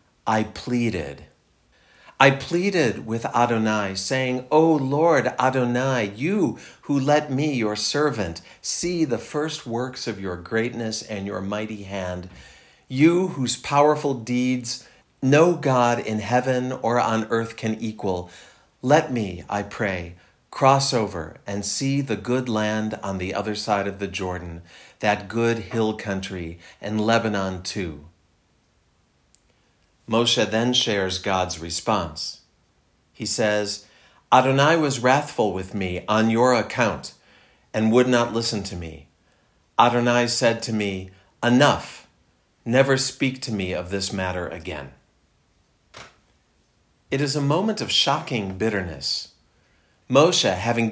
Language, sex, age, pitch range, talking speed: English, male, 50-69, 95-130 Hz, 125 wpm